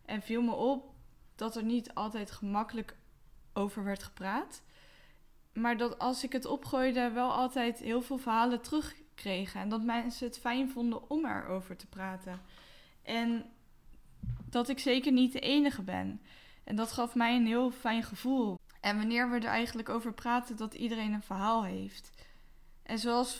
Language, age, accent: Dutch, 10-29, Dutch